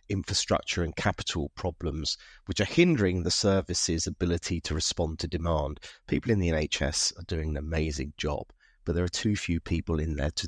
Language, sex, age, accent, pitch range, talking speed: English, male, 30-49, British, 80-105 Hz, 185 wpm